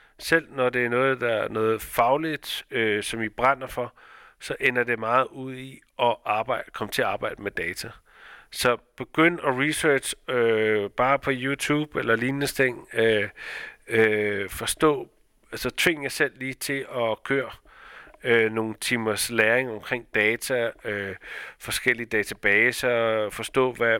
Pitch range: 110-130 Hz